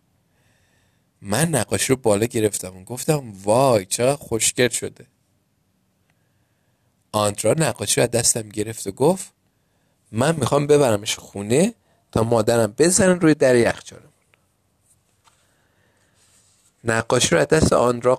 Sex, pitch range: male, 100-140 Hz